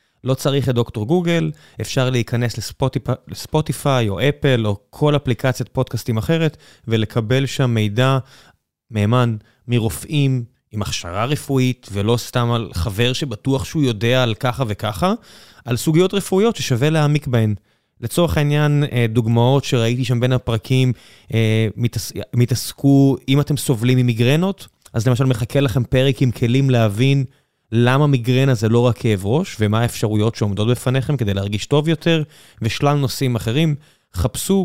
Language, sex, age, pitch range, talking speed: Hebrew, male, 20-39, 115-145 Hz, 135 wpm